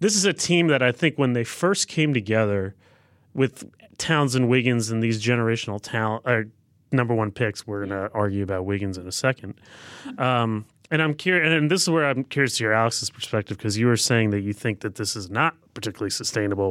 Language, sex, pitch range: English, male, 110-150 Hz